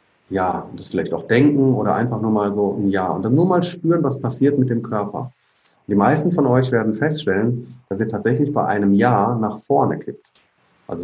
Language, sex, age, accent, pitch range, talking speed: German, male, 40-59, German, 110-150 Hz, 205 wpm